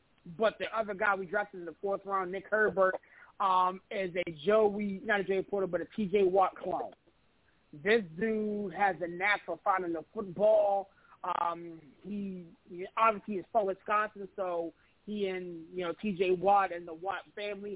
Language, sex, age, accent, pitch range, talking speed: English, male, 30-49, American, 185-215 Hz, 175 wpm